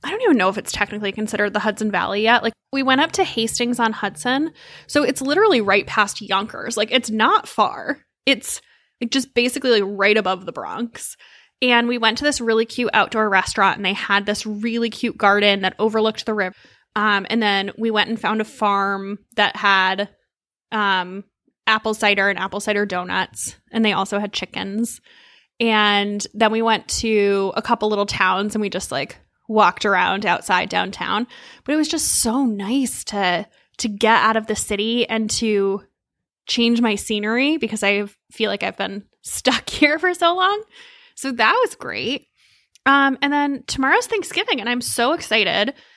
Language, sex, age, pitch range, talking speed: English, female, 10-29, 205-245 Hz, 185 wpm